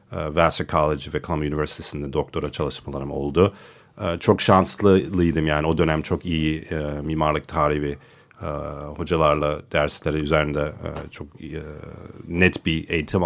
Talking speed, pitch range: 110 wpm, 75-105 Hz